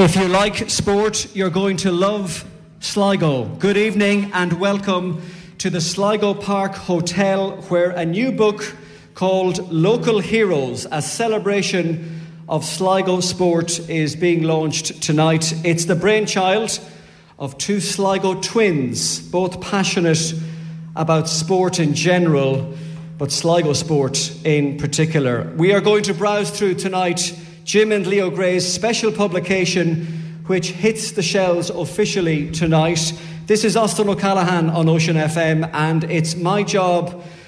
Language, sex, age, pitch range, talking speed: English, male, 40-59, 160-195 Hz, 130 wpm